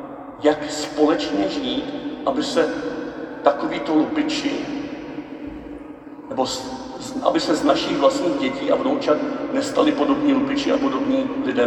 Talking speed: 120 wpm